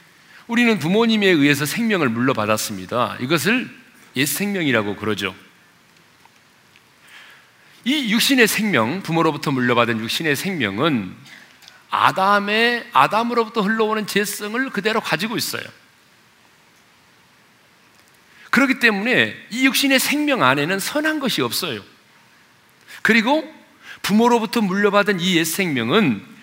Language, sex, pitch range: Korean, male, 160-245 Hz